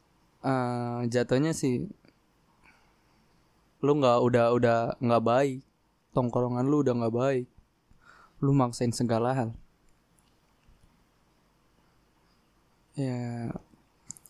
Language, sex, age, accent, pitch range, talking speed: Indonesian, male, 20-39, native, 120-130 Hz, 80 wpm